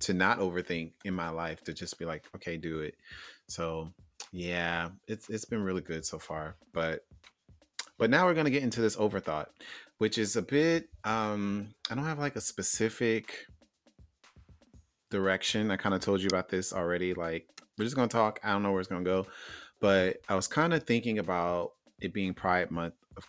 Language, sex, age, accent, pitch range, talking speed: English, male, 30-49, American, 85-100 Hz, 195 wpm